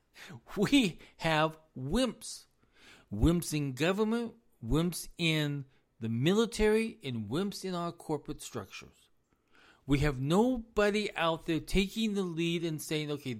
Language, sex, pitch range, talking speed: English, male, 125-170 Hz, 120 wpm